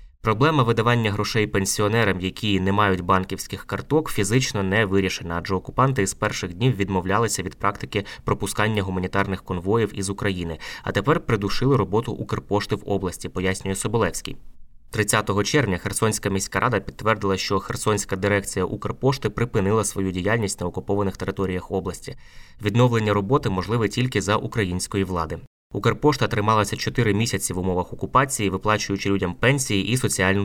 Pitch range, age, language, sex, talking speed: 95-115 Hz, 20-39, Ukrainian, male, 140 wpm